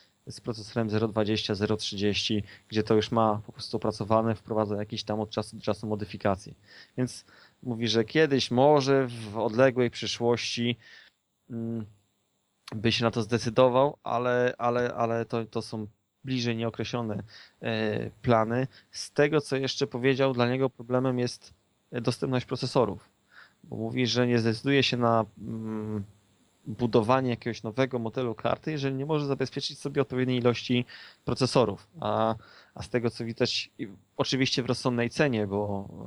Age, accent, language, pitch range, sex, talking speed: 20-39, native, Polish, 105-125 Hz, male, 140 wpm